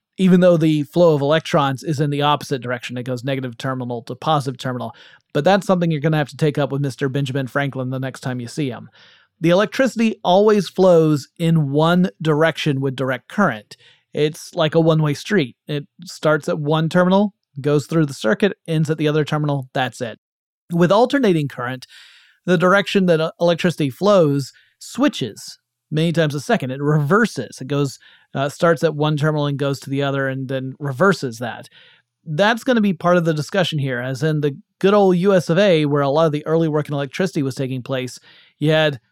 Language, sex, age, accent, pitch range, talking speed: English, male, 30-49, American, 140-175 Hz, 200 wpm